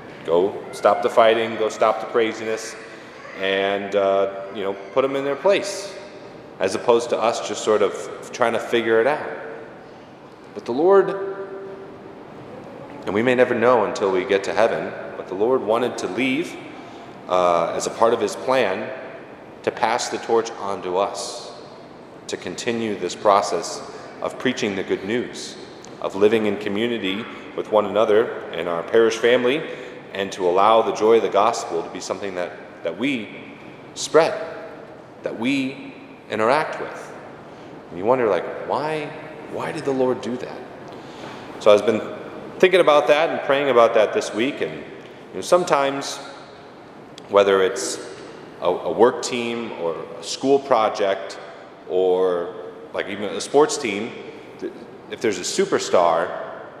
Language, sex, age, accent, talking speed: English, male, 30-49, American, 155 wpm